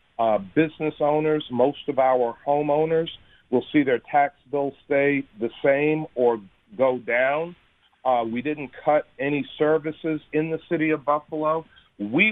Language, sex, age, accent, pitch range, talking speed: English, male, 40-59, American, 120-150 Hz, 145 wpm